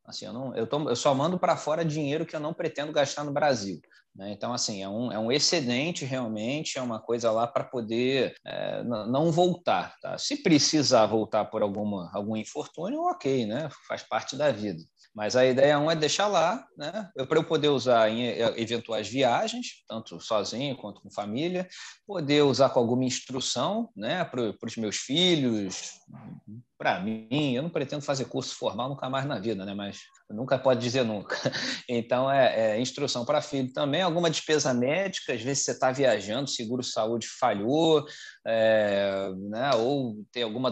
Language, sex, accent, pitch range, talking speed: Portuguese, male, Brazilian, 115-150 Hz, 180 wpm